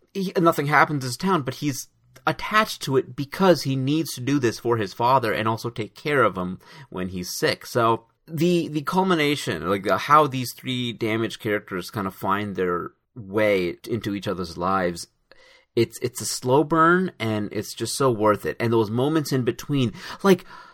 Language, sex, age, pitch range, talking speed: English, male, 30-49, 105-155 Hz, 190 wpm